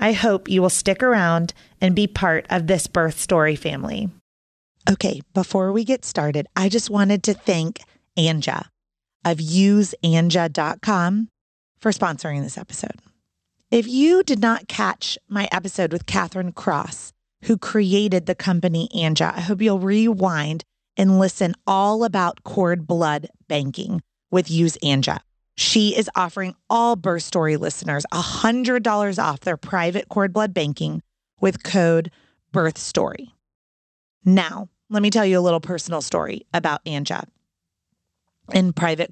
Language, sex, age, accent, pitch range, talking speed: English, female, 30-49, American, 160-200 Hz, 135 wpm